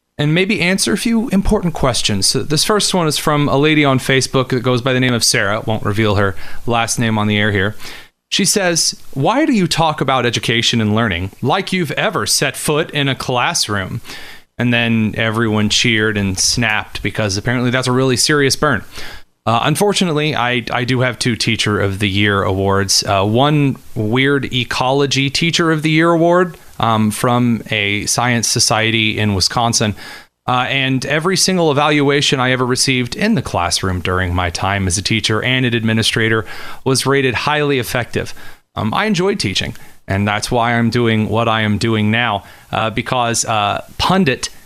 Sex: male